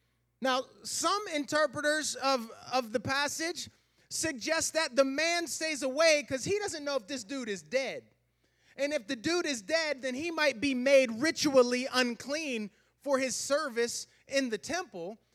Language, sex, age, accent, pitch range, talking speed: English, male, 30-49, American, 195-300 Hz, 160 wpm